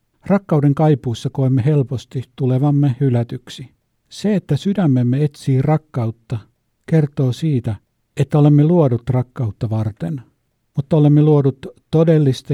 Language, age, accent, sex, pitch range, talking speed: Finnish, 60-79, native, male, 120-150 Hz, 105 wpm